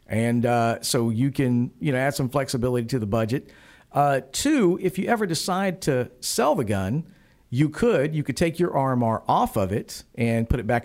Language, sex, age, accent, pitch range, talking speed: English, male, 50-69, American, 120-150 Hz, 205 wpm